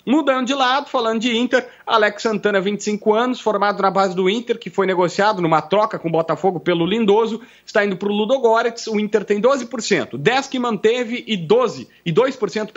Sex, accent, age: male, Brazilian, 30-49